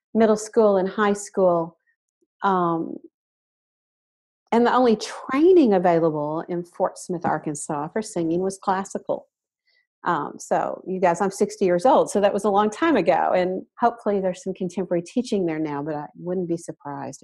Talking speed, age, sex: 165 wpm, 50-69, female